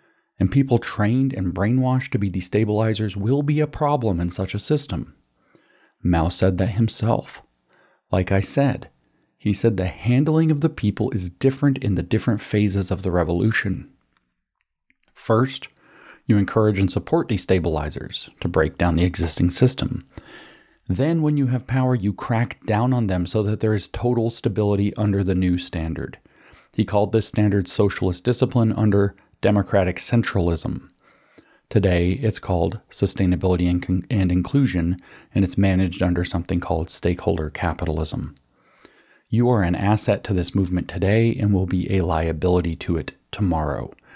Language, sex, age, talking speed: English, male, 40-59, 150 wpm